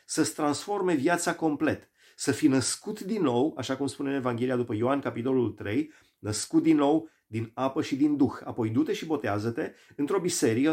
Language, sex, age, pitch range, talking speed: Romanian, male, 30-49, 115-155 Hz, 180 wpm